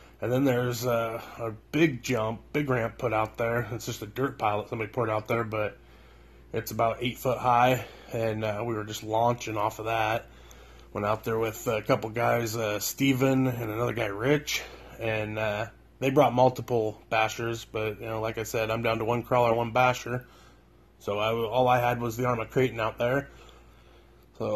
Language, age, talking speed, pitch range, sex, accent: English, 20-39, 200 wpm, 110-135 Hz, male, American